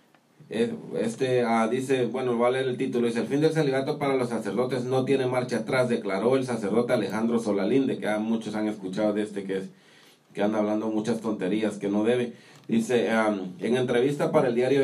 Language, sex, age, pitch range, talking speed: English, male, 40-59, 110-130 Hz, 200 wpm